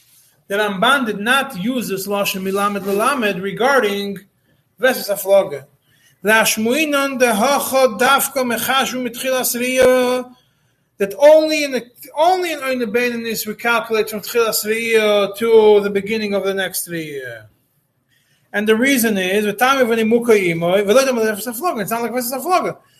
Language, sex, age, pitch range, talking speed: English, male, 30-49, 180-240 Hz, 130 wpm